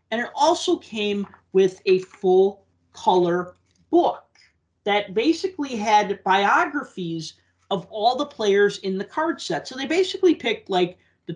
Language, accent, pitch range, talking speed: English, American, 170-215 Hz, 135 wpm